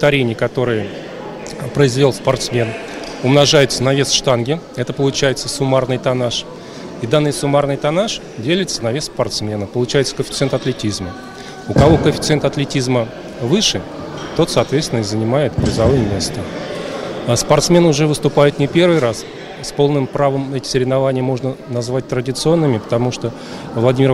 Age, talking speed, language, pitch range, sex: 30-49, 130 wpm, Russian, 120-145 Hz, male